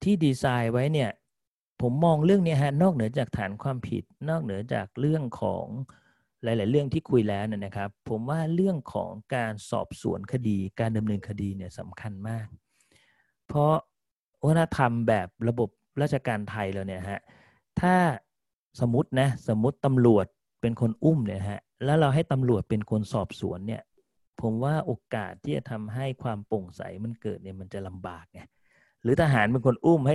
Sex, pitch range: male, 105-135 Hz